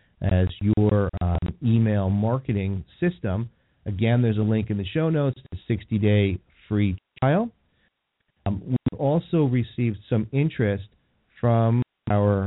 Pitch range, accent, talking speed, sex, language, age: 100-115 Hz, American, 125 wpm, male, English, 40-59